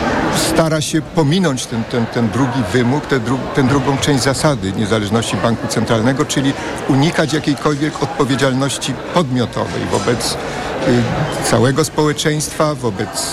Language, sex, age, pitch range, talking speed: Polish, male, 50-69, 125-150 Hz, 115 wpm